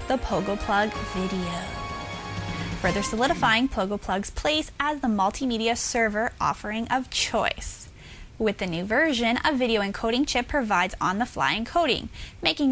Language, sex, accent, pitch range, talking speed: English, female, American, 210-270 Hz, 130 wpm